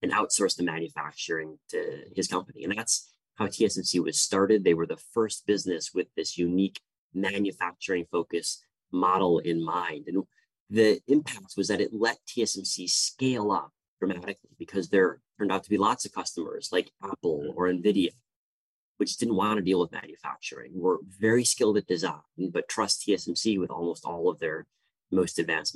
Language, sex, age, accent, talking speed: English, male, 30-49, American, 170 wpm